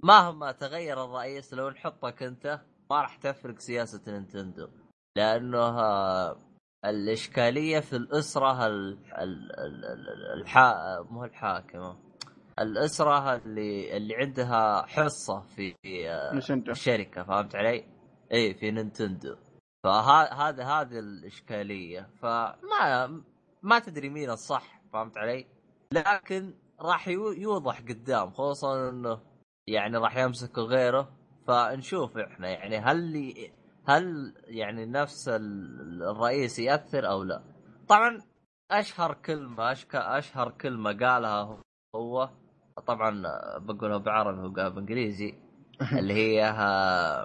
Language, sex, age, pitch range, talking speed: Arabic, male, 20-39, 105-145 Hz, 100 wpm